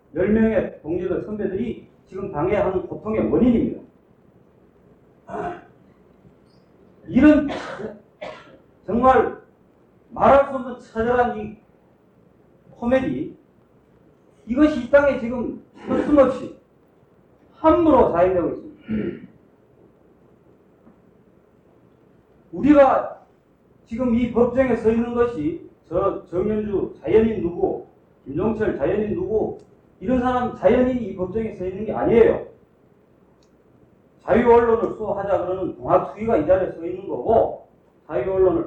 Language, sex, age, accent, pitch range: Korean, male, 40-59, native, 195-275 Hz